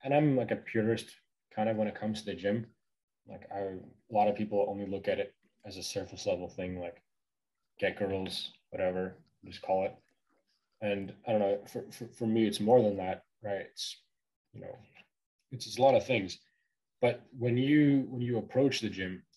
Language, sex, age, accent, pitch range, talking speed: English, male, 20-39, American, 100-125 Hz, 200 wpm